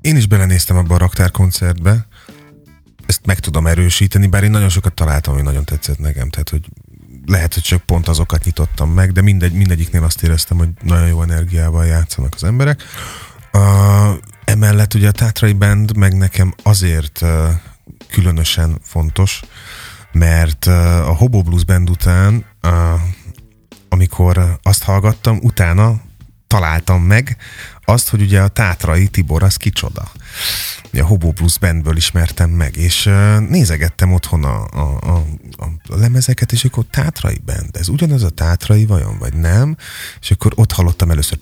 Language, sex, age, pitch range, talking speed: Hungarian, male, 30-49, 85-100 Hz, 150 wpm